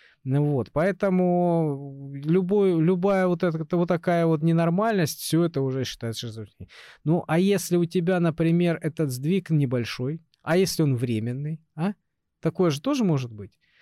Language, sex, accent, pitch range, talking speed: Russian, male, native, 130-170 Hz, 140 wpm